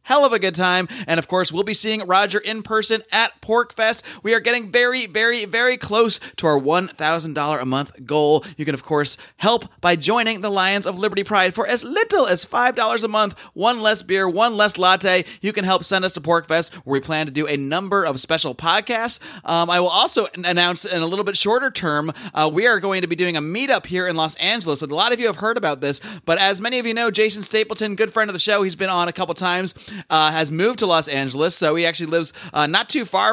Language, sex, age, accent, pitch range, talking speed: English, male, 30-49, American, 155-205 Hz, 245 wpm